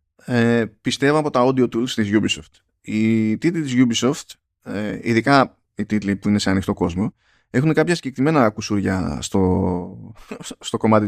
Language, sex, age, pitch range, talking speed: Greek, male, 20-39, 105-135 Hz, 145 wpm